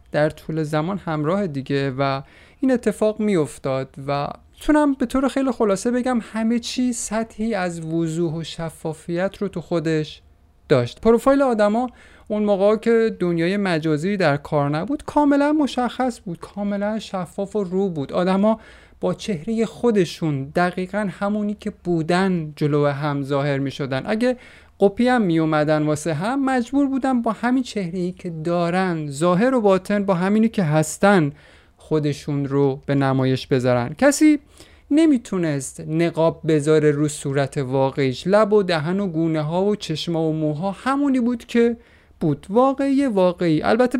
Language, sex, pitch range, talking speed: Persian, male, 155-230 Hz, 150 wpm